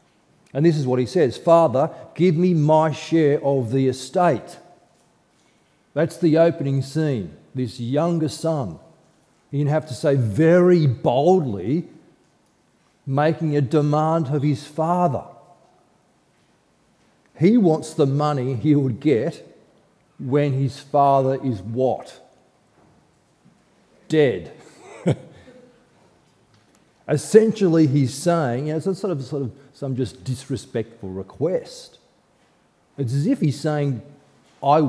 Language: English